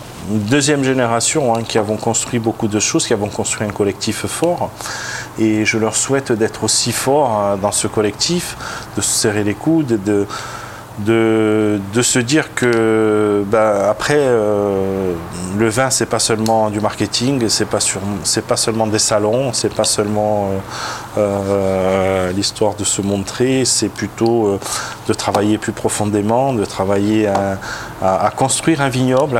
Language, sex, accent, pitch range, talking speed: French, male, French, 105-125 Hz, 165 wpm